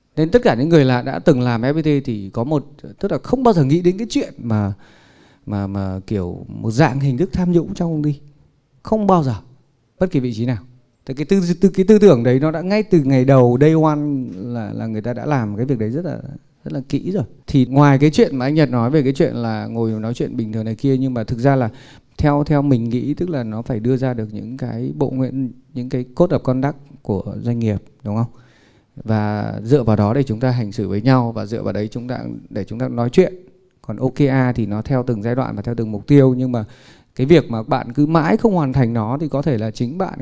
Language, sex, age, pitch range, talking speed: Vietnamese, male, 20-39, 120-155 Hz, 260 wpm